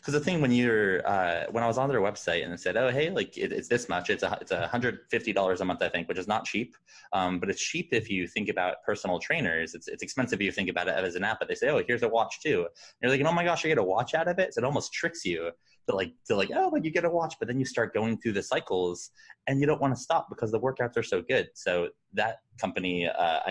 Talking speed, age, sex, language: 305 wpm, 20-39, male, English